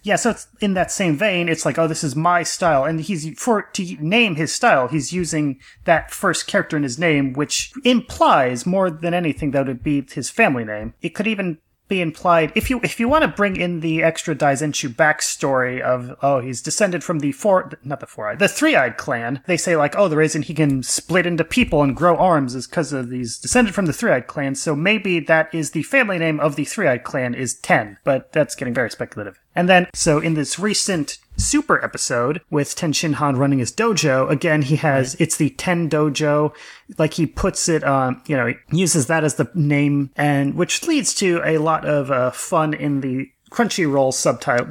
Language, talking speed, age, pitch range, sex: English, 215 wpm, 30-49, 140-180 Hz, male